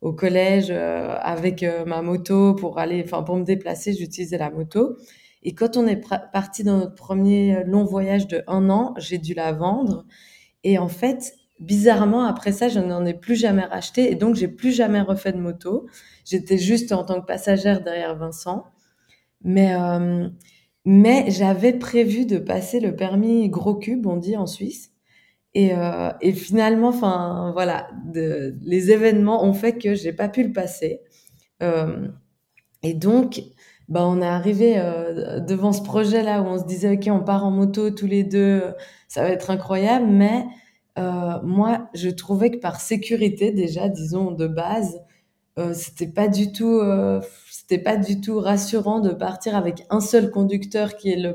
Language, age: French, 20-39